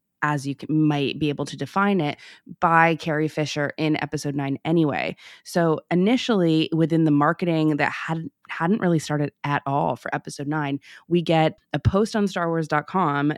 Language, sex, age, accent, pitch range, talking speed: English, female, 20-39, American, 145-165 Hz, 165 wpm